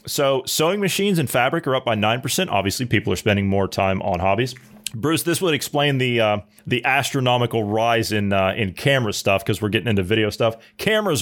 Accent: American